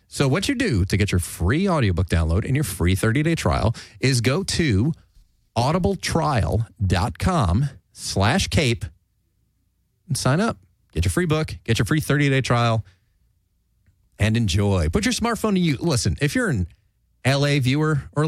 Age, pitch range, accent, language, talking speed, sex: 30-49, 95-140 Hz, American, English, 155 wpm, male